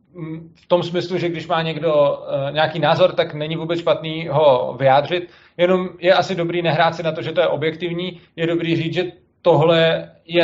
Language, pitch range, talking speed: Czech, 140-165 Hz, 190 wpm